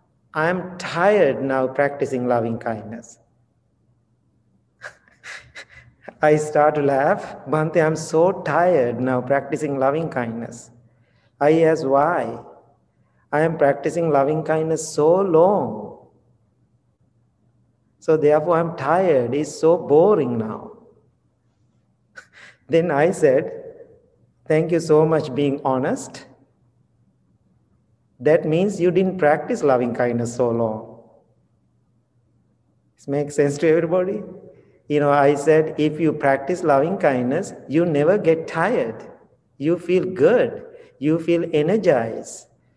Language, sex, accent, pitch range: English, male, Indian, 130-165 Hz